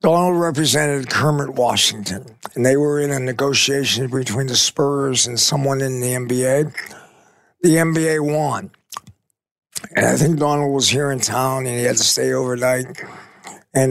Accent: American